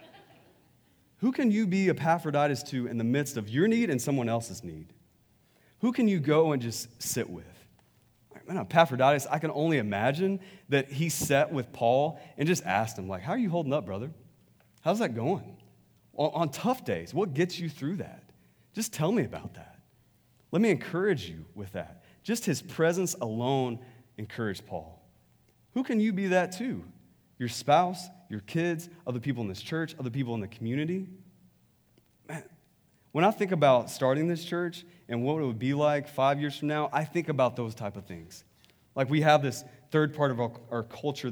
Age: 30-49